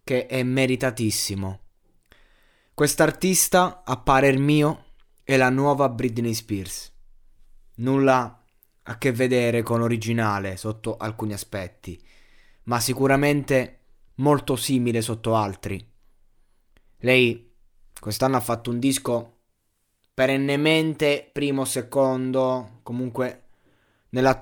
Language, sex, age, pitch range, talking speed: Italian, male, 20-39, 110-135 Hz, 95 wpm